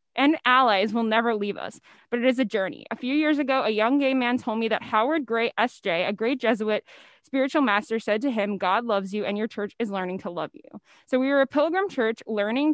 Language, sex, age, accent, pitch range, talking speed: English, female, 10-29, American, 215-265 Hz, 240 wpm